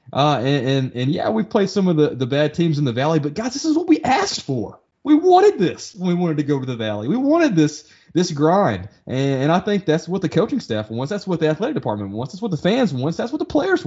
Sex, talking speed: male, 275 wpm